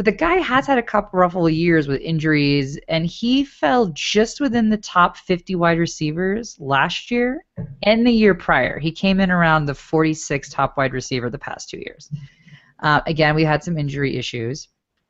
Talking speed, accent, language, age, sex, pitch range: 185 wpm, American, English, 20-39, female, 135-180 Hz